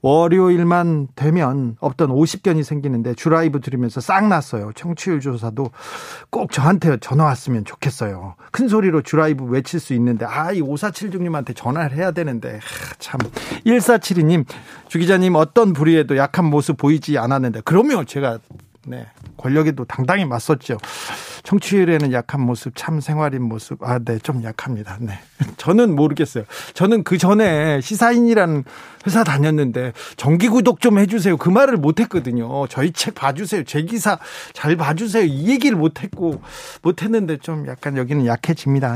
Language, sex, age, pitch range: Korean, male, 40-59, 135-185 Hz